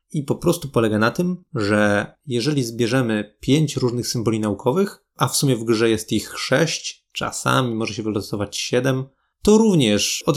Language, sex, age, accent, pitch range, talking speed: Polish, male, 20-39, native, 110-140 Hz, 170 wpm